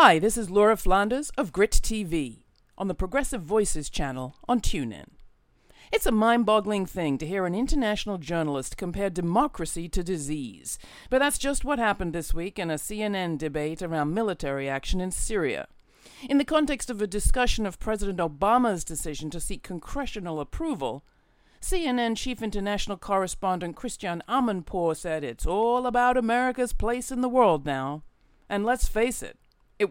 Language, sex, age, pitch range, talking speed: English, female, 50-69, 170-235 Hz, 160 wpm